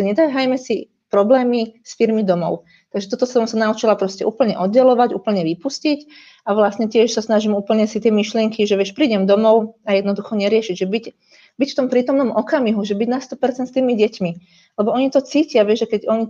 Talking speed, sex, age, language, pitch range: 200 wpm, female, 30-49, Slovak, 200-230 Hz